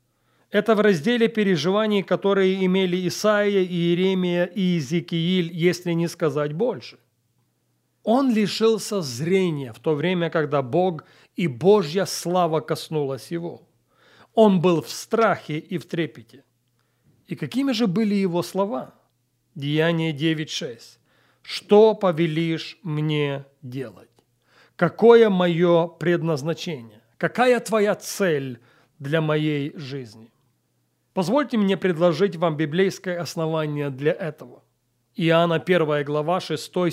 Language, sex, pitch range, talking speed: Russian, male, 145-180 Hz, 110 wpm